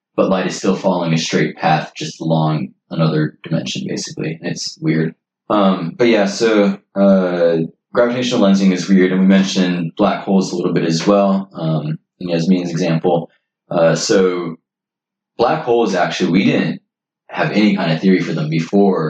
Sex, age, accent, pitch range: male, 20-39, American, 85-100 Hz